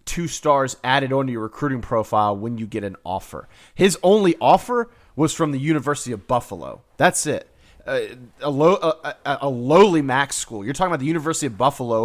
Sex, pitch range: male, 115-165 Hz